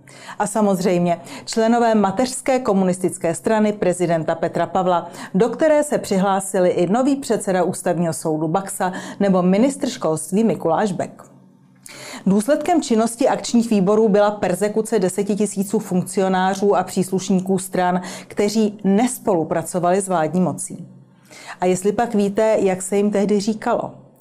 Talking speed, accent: 120 wpm, native